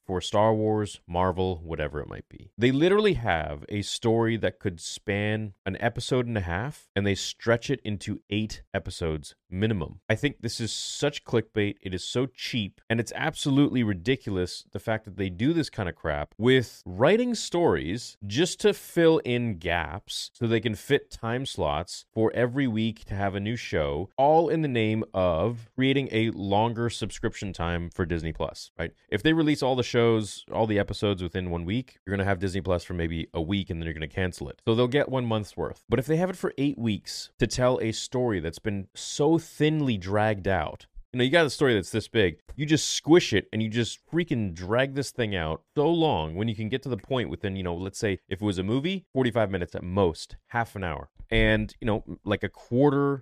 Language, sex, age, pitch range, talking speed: English, male, 30-49, 95-120 Hz, 220 wpm